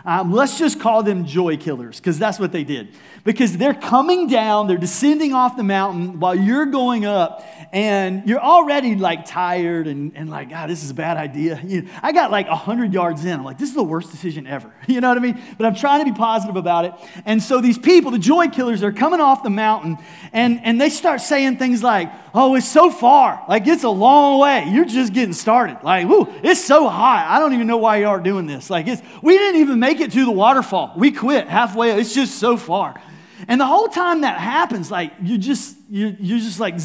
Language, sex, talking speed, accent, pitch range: English, male, 235 wpm, American, 195-300 Hz